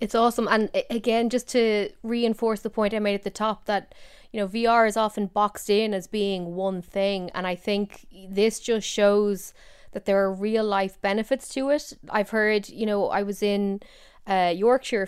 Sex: female